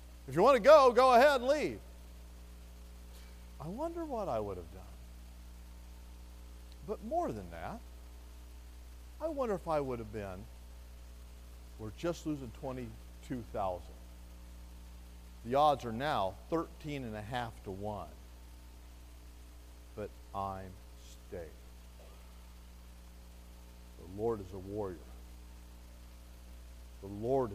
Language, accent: English, American